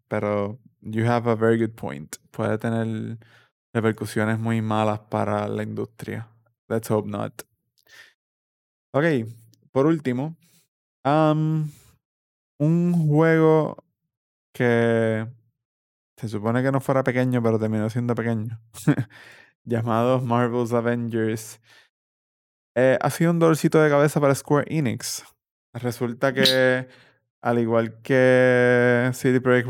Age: 20-39